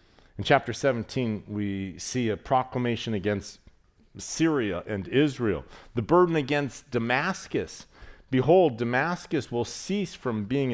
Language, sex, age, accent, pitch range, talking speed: English, male, 40-59, American, 115-160 Hz, 115 wpm